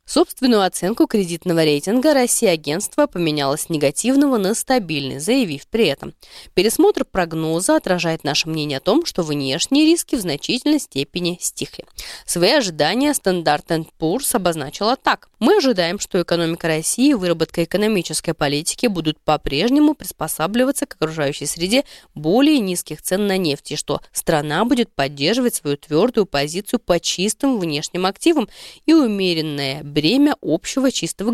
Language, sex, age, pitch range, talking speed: Russian, female, 20-39, 155-245 Hz, 135 wpm